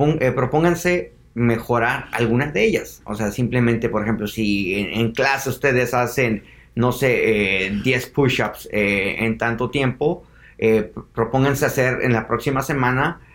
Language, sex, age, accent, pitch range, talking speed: English, male, 30-49, Mexican, 110-130 Hz, 145 wpm